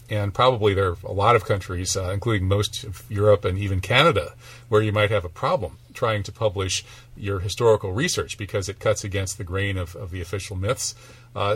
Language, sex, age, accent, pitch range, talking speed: English, male, 40-59, American, 100-115 Hz, 210 wpm